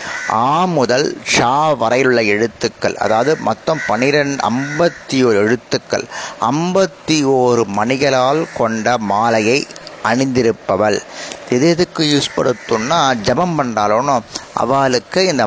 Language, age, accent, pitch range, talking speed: Tamil, 30-49, native, 120-155 Hz, 80 wpm